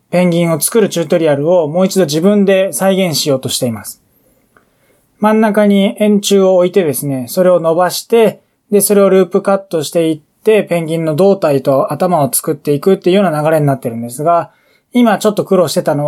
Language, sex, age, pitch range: Japanese, male, 20-39, 150-200 Hz